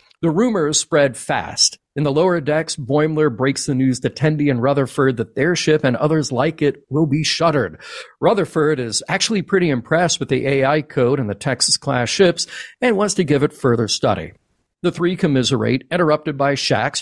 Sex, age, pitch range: male, 40-59, 130-170 Hz